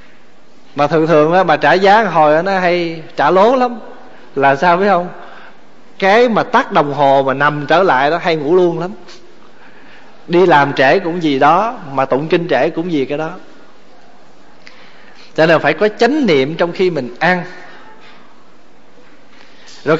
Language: Vietnamese